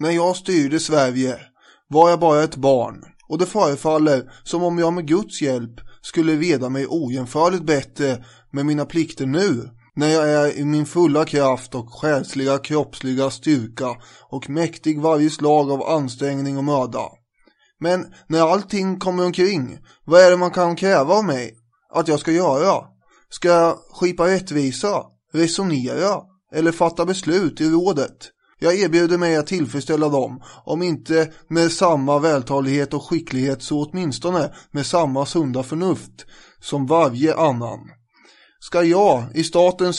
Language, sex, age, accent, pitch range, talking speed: English, male, 20-39, Swedish, 140-170 Hz, 150 wpm